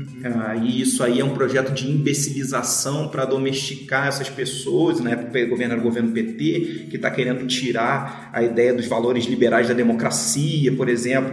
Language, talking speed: Portuguese, 170 wpm